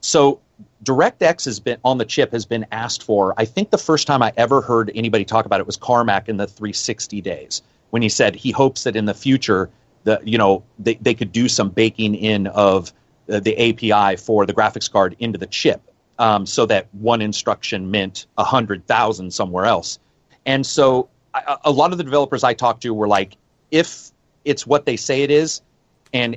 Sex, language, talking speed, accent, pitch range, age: male, English, 205 wpm, American, 105-135 Hz, 30-49